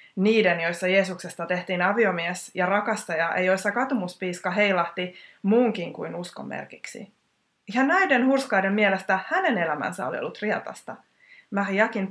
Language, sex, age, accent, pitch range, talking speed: Finnish, female, 20-39, native, 175-220 Hz, 120 wpm